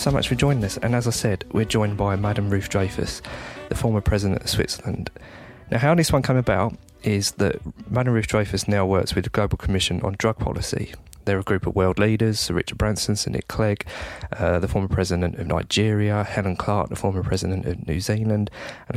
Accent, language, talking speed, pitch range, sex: British, English, 210 wpm, 90-110 Hz, male